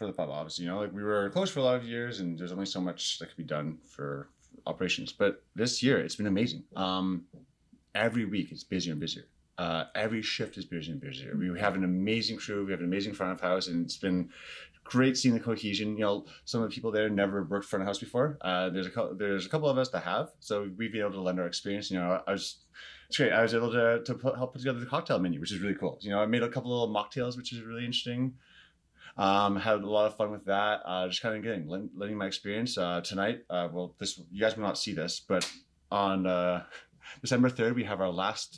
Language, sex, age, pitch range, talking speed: English, male, 30-49, 90-115 Hz, 255 wpm